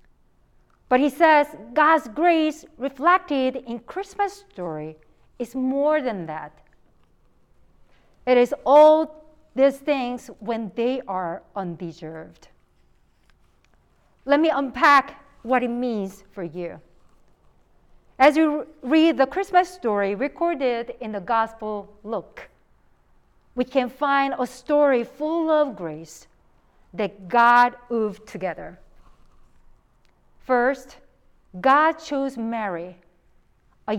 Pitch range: 195-280 Hz